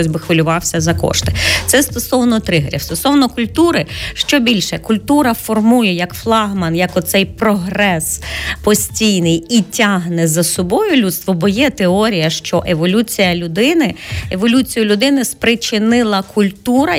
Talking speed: 125 wpm